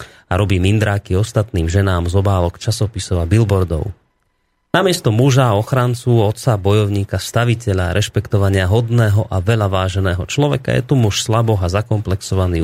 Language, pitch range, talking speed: Slovak, 95-120 Hz, 135 wpm